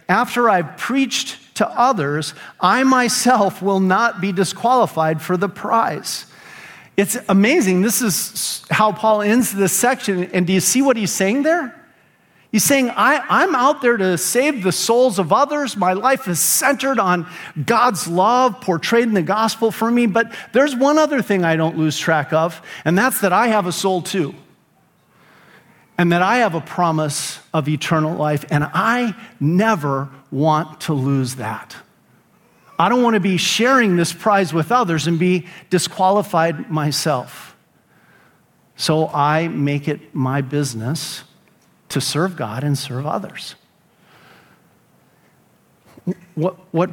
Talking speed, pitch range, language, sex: 150 wpm, 160-230 Hz, English, male